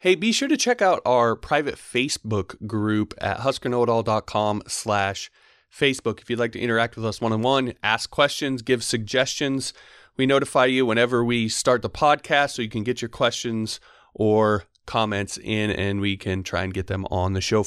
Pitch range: 95-120 Hz